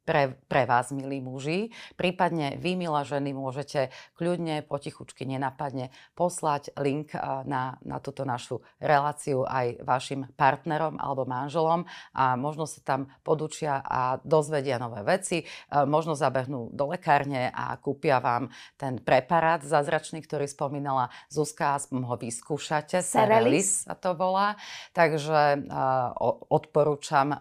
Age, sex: 30-49, female